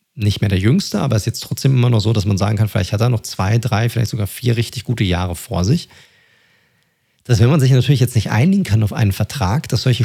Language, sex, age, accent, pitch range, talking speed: German, male, 40-59, German, 110-135 Hz, 265 wpm